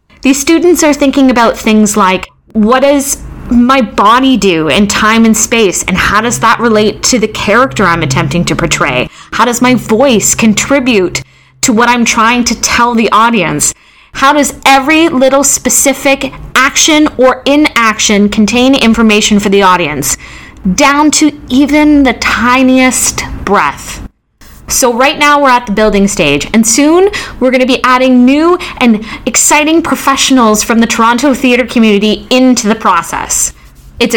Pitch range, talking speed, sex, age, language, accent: 200-265 Hz, 155 wpm, female, 20-39, English, American